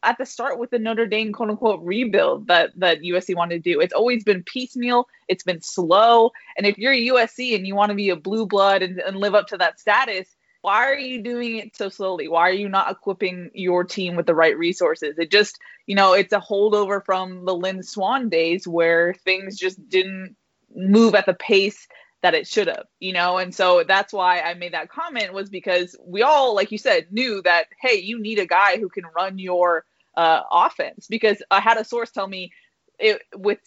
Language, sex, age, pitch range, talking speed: English, female, 20-39, 180-230 Hz, 215 wpm